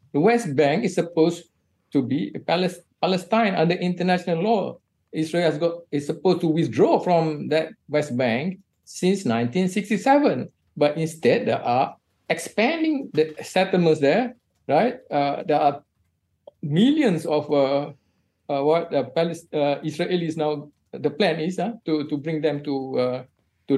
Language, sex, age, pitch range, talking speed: English, male, 50-69, 130-175 Hz, 145 wpm